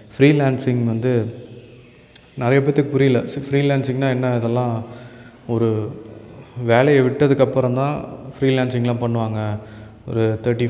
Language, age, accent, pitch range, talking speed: Tamil, 20-39, native, 115-135 Hz, 90 wpm